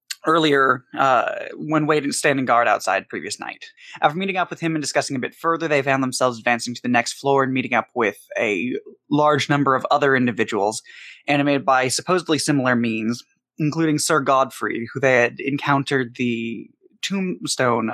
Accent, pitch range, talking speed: American, 125-155 Hz, 170 wpm